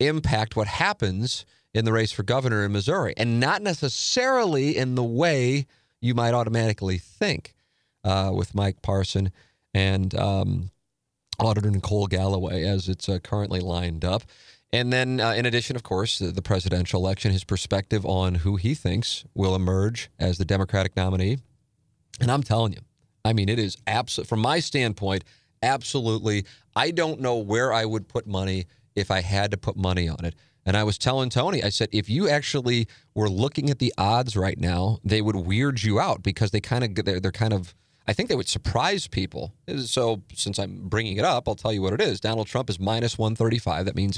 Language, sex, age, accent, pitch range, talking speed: English, male, 40-59, American, 95-120 Hz, 195 wpm